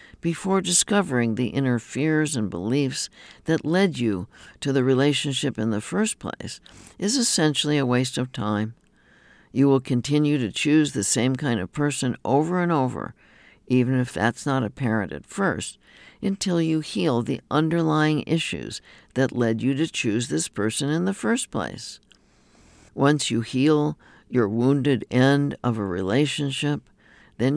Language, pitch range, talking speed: English, 115-145 Hz, 150 wpm